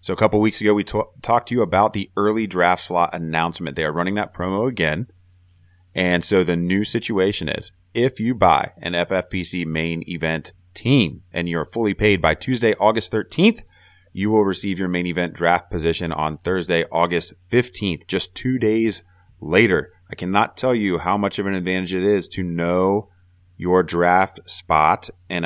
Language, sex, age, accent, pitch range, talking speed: English, male, 30-49, American, 85-95 Hz, 180 wpm